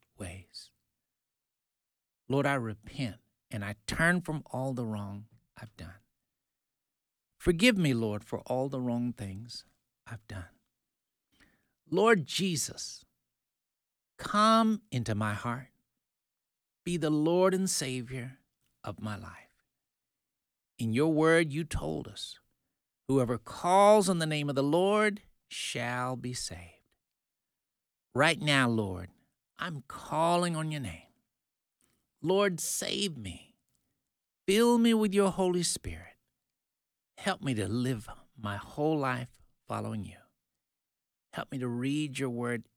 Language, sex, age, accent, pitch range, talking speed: English, male, 60-79, American, 105-165 Hz, 120 wpm